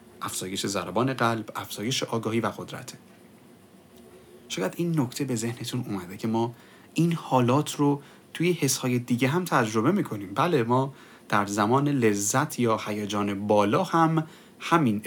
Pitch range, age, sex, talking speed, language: 110-150 Hz, 30-49, male, 140 wpm, Persian